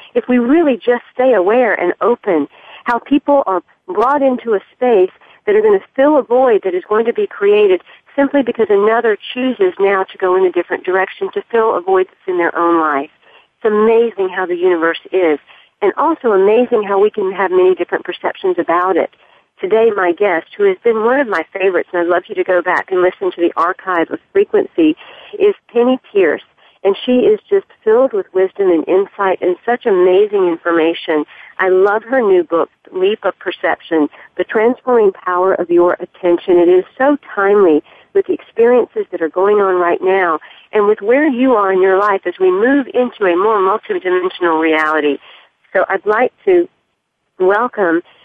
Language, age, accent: English, 50-69, American